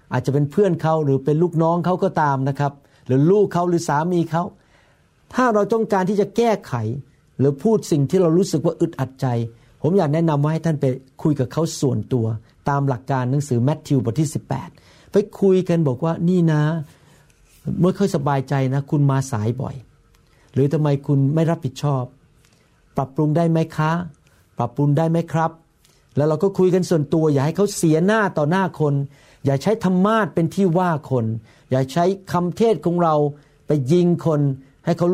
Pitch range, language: 135-175 Hz, Thai